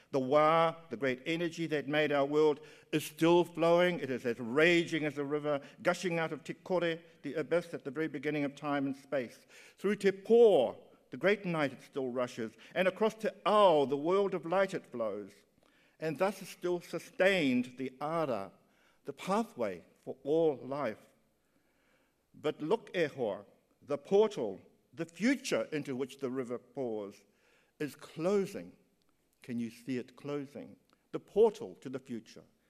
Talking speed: 160 wpm